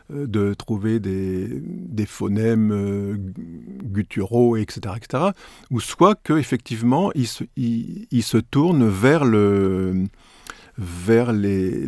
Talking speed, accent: 105 wpm, French